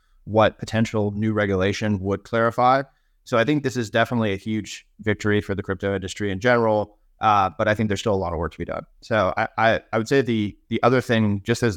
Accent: American